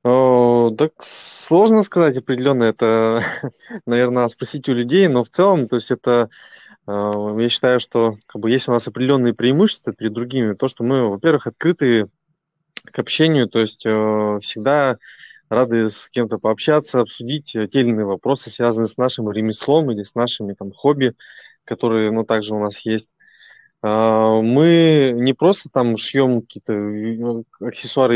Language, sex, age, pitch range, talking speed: Russian, male, 20-39, 110-135 Hz, 145 wpm